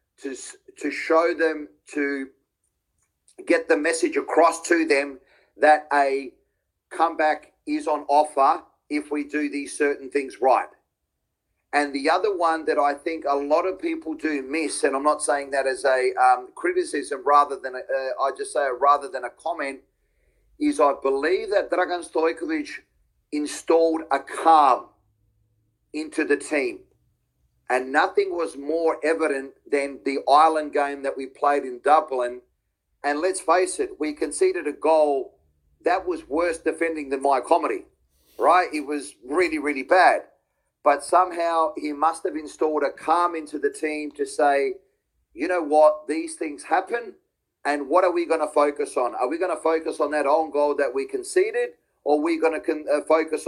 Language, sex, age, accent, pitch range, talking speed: English, male, 40-59, Australian, 140-165 Hz, 170 wpm